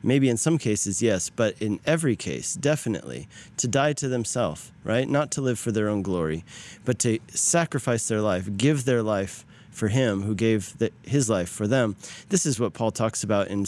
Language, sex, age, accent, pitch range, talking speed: English, male, 30-49, American, 105-135 Hz, 200 wpm